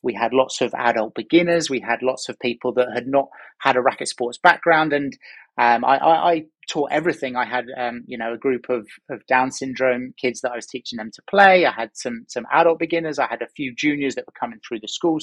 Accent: British